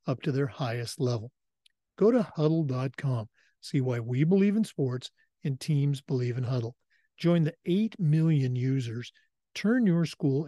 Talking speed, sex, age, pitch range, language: 155 wpm, male, 50-69, 135-170 Hz, English